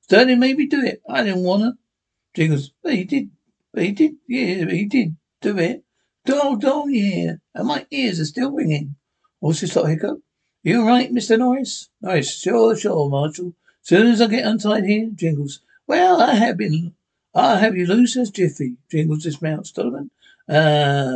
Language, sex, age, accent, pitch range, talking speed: English, male, 60-79, British, 155-255 Hz, 180 wpm